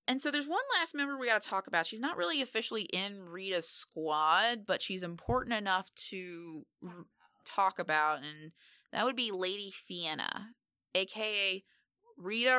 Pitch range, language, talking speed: 165-220 Hz, English, 155 wpm